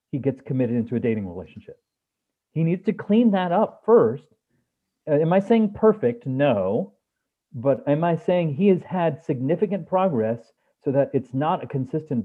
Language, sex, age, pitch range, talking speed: English, male, 40-59, 130-205 Hz, 170 wpm